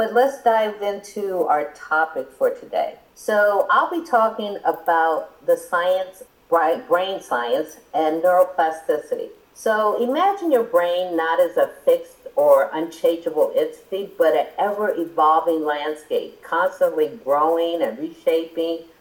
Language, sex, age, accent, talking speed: English, female, 50-69, American, 125 wpm